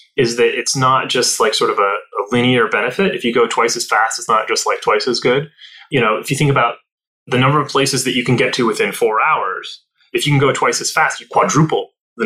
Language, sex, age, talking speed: English, male, 20-39, 260 wpm